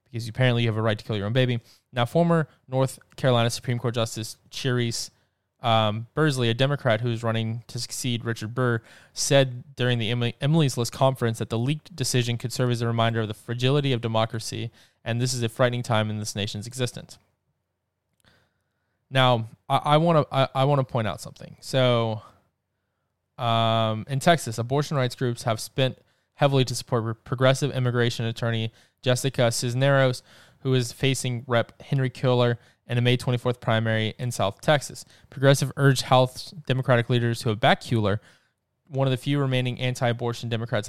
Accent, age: American, 20-39